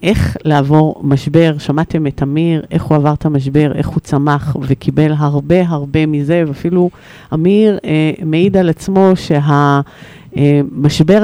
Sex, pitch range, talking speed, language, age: female, 145-190 Hz, 135 wpm, Hebrew, 50-69